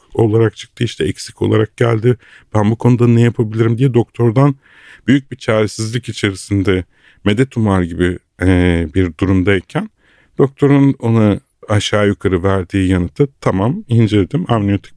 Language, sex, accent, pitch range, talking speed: Turkish, male, native, 100-125 Hz, 125 wpm